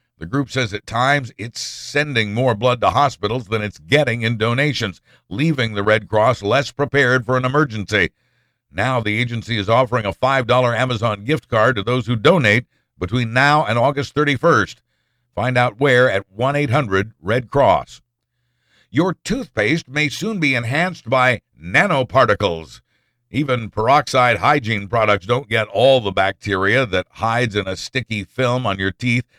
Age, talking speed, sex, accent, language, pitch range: 60-79, 155 wpm, male, American, English, 105-135 Hz